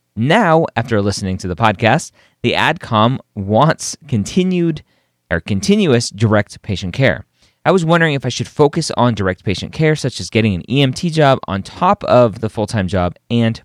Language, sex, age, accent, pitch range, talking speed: English, male, 30-49, American, 95-140 Hz, 170 wpm